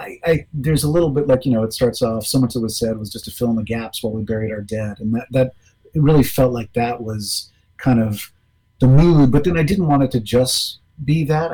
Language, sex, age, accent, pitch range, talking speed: English, male, 30-49, American, 110-130 Hz, 270 wpm